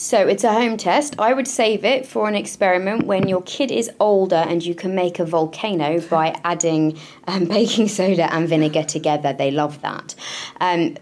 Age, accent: 20-39, British